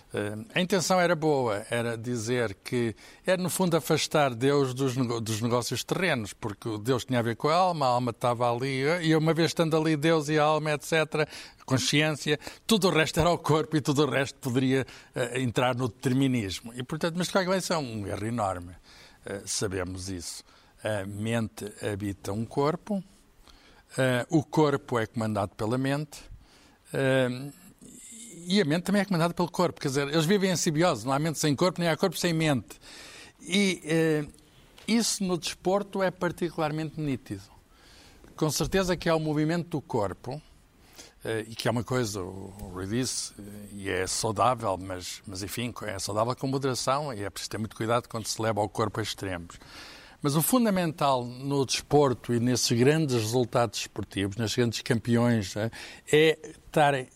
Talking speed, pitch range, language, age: 175 wpm, 115-160 Hz, Portuguese, 60-79